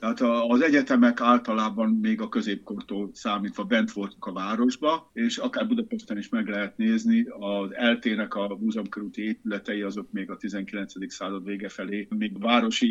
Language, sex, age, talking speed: Hungarian, male, 50-69, 155 wpm